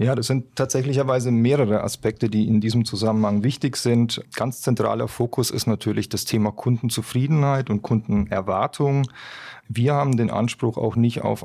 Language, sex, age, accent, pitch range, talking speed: German, male, 30-49, German, 105-120 Hz, 150 wpm